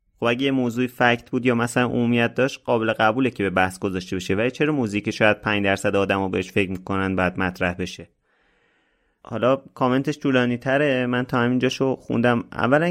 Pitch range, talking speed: 105-135 Hz, 185 wpm